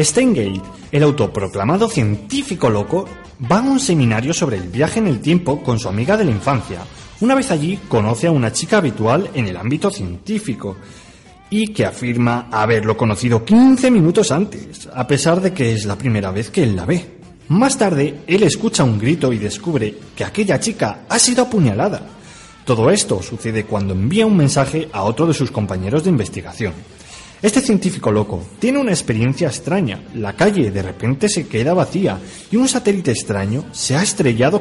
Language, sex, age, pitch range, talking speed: Spanish, male, 30-49, 110-175 Hz, 175 wpm